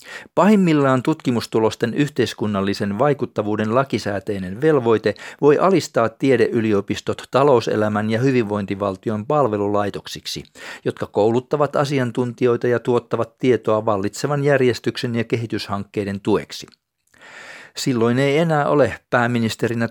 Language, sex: Finnish, male